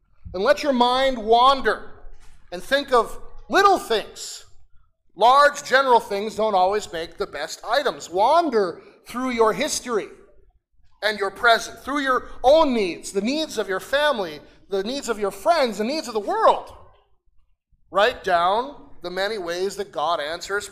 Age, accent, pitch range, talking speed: 40-59, American, 180-275 Hz, 155 wpm